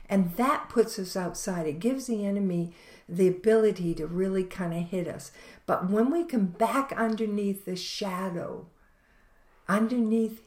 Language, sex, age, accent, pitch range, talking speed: English, female, 60-79, American, 175-220 Hz, 150 wpm